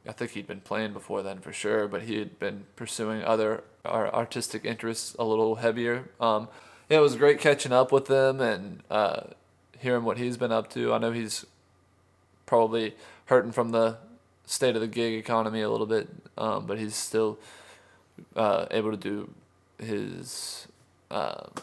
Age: 20-39